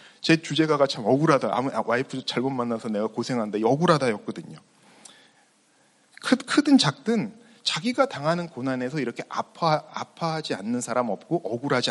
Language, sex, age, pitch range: Korean, male, 40-59, 140-215 Hz